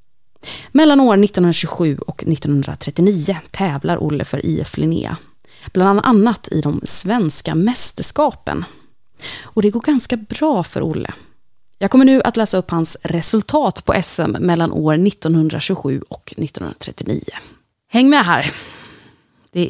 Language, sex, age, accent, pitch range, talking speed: Swedish, female, 30-49, native, 170-235 Hz, 130 wpm